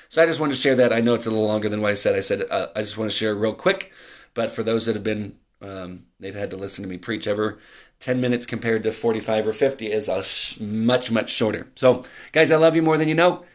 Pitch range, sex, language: 110-130 Hz, male, English